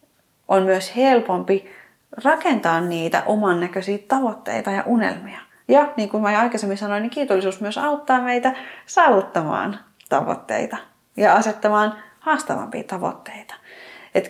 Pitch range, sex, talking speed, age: 190-255 Hz, female, 120 wpm, 30-49